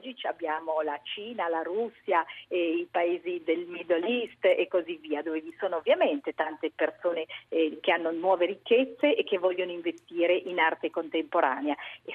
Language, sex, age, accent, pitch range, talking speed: Italian, female, 40-59, native, 160-235 Hz, 170 wpm